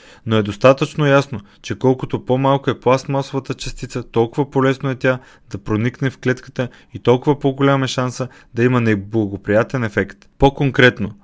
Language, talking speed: Bulgarian, 155 wpm